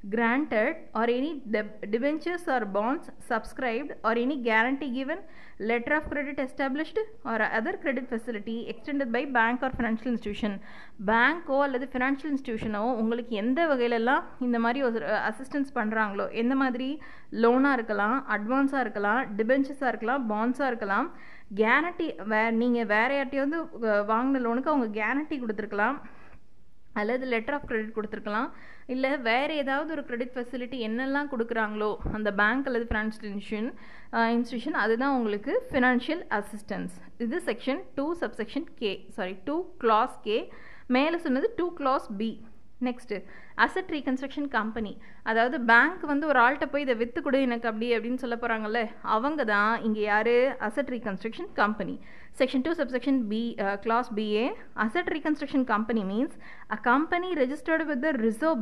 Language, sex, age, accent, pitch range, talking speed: Tamil, female, 20-39, native, 220-280 Hz, 140 wpm